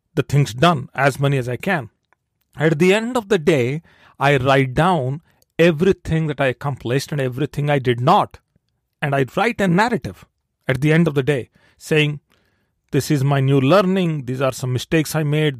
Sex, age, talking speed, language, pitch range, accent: male, 40-59, 190 wpm, English, 125-170 Hz, Indian